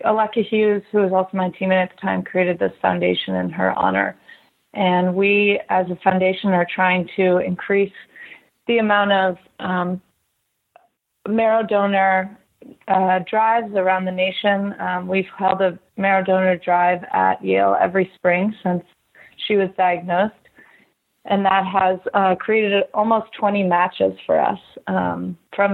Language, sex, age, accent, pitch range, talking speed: English, female, 30-49, American, 180-200 Hz, 145 wpm